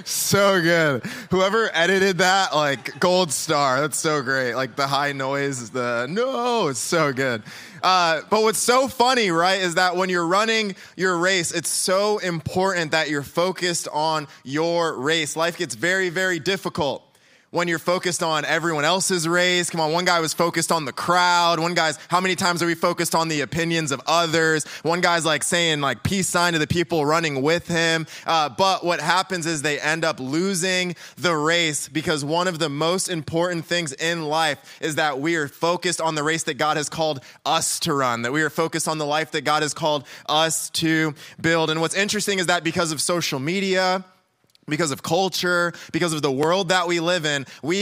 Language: English